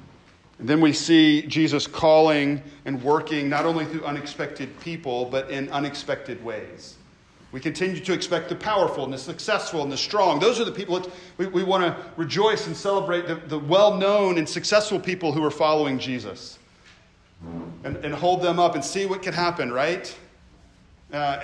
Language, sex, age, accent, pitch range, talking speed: English, male, 40-59, American, 140-170 Hz, 175 wpm